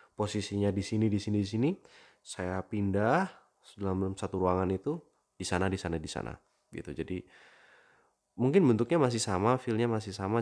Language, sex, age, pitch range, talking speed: Indonesian, male, 20-39, 95-115 Hz, 160 wpm